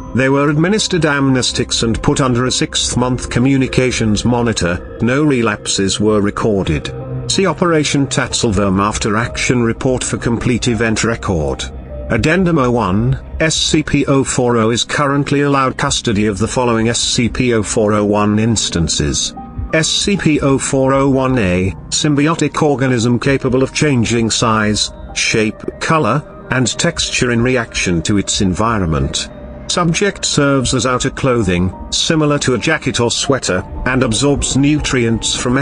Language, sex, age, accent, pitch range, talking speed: English, male, 50-69, British, 105-140 Hz, 115 wpm